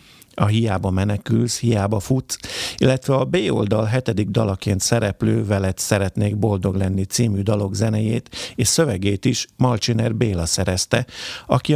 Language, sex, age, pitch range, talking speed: Hungarian, male, 50-69, 100-120 Hz, 135 wpm